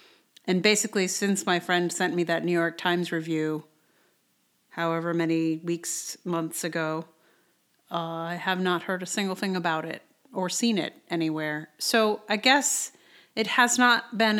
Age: 40-59